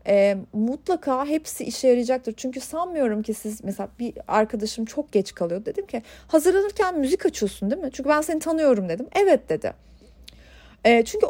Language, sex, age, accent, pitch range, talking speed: Turkish, female, 40-59, native, 225-320 Hz, 165 wpm